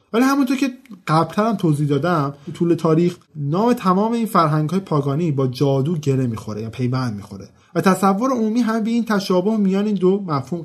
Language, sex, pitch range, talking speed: Persian, male, 145-210 Hz, 190 wpm